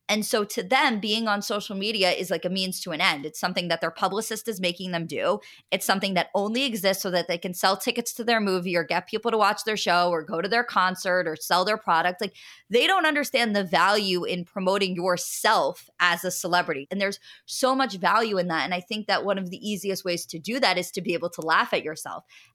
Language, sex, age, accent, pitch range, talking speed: English, female, 20-39, American, 175-225 Hz, 250 wpm